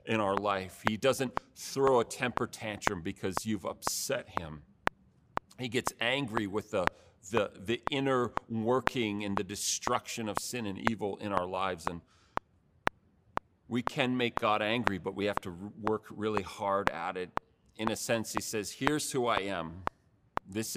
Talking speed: 165 wpm